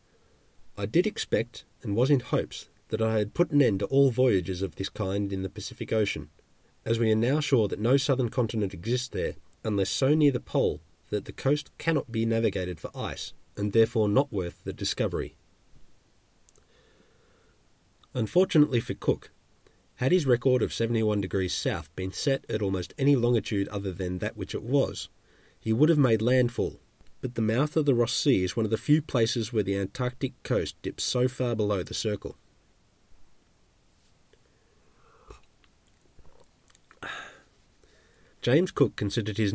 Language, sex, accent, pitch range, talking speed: English, male, Australian, 95-135 Hz, 160 wpm